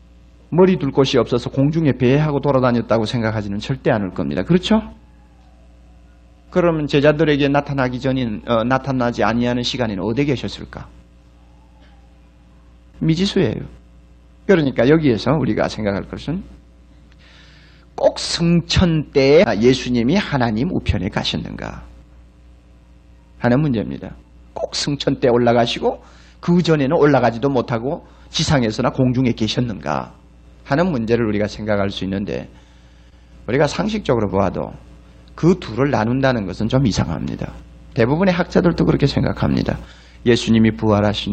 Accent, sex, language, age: native, male, Korean, 40-59